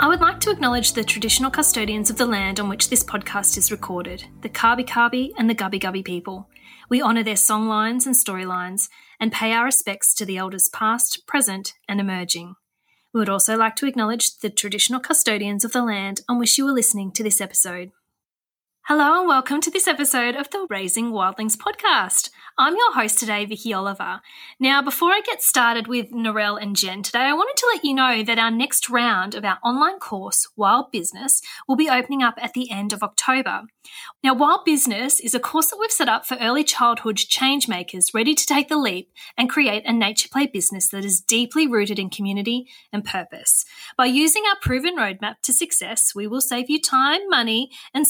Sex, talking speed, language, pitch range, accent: female, 205 wpm, English, 205-280 Hz, Australian